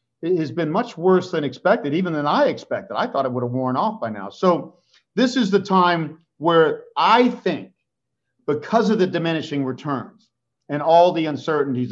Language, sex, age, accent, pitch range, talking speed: English, male, 50-69, American, 145-205 Hz, 185 wpm